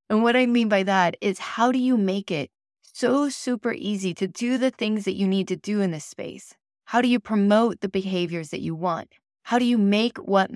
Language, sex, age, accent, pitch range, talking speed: English, female, 20-39, American, 175-215 Hz, 235 wpm